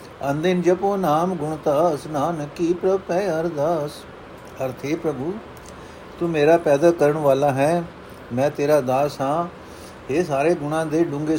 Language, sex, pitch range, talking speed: Punjabi, male, 130-165 Hz, 135 wpm